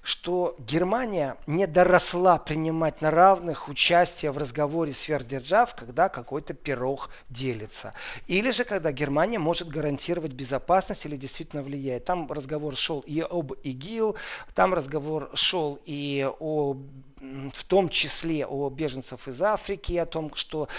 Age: 40-59